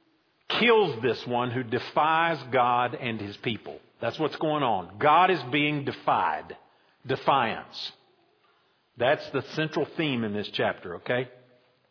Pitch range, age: 125-165 Hz, 50-69